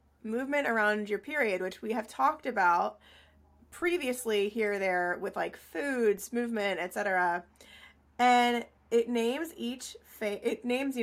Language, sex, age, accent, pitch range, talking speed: English, female, 20-39, American, 200-240 Hz, 135 wpm